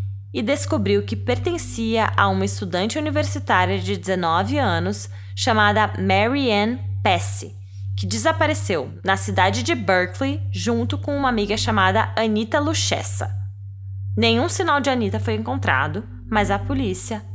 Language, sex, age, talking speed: Portuguese, female, 20-39, 125 wpm